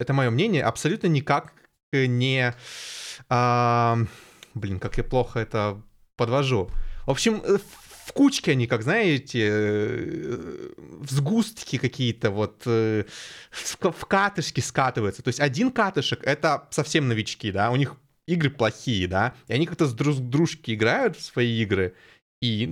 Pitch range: 120-175 Hz